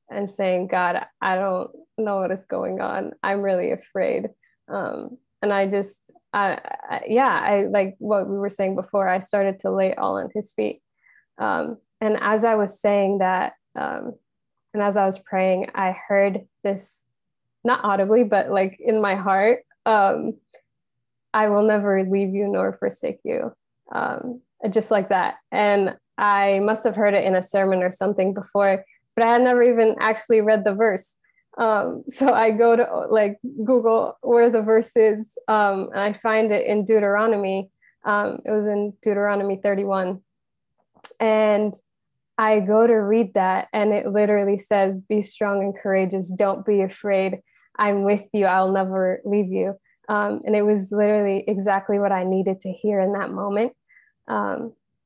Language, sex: English, female